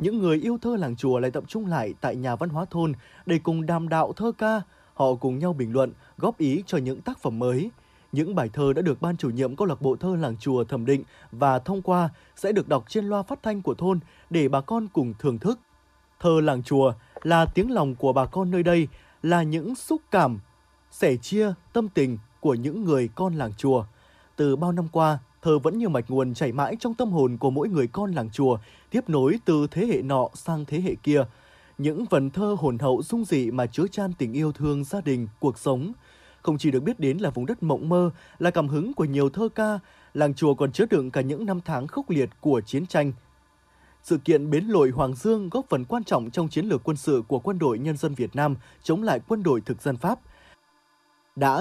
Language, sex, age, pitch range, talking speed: Vietnamese, male, 20-39, 135-185 Hz, 235 wpm